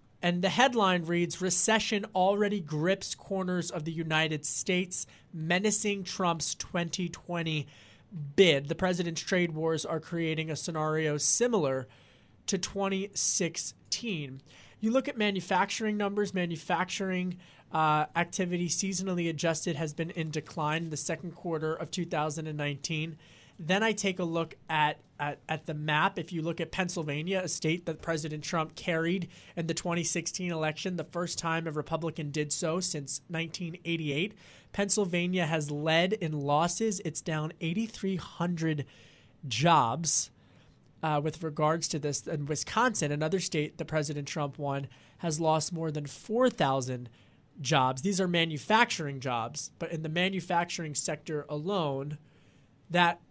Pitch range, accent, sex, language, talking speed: 150-180 Hz, American, male, English, 135 wpm